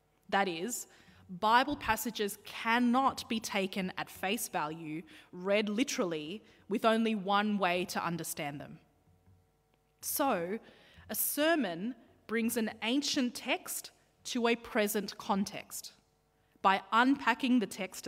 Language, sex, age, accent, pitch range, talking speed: English, female, 20-39, Australian, 180-245 Hz, 115 wpm